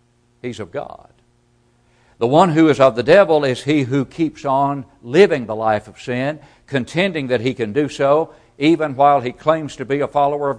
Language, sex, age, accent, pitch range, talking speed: English, male, 60-79, American, 120-140 Hz, 200 wpm